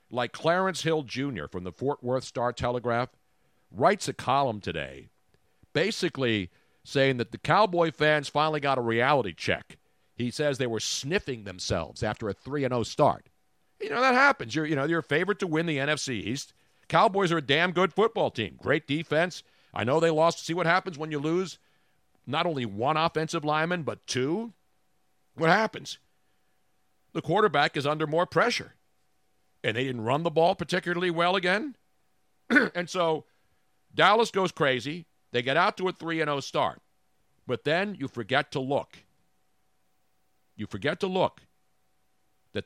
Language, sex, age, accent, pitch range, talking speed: English, male, 50-69, American, 120-165 Hz, 160 wpm